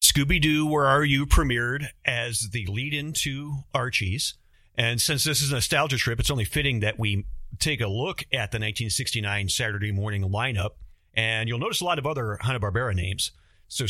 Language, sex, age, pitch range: English, male, 40-59, 105-135 Hz